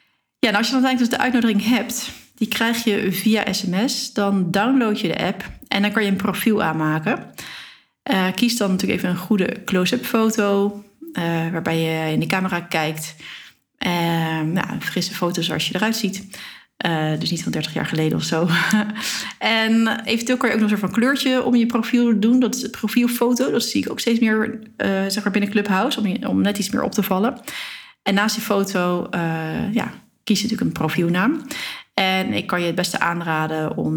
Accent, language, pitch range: Dutch, Dutch, 180-235 Hz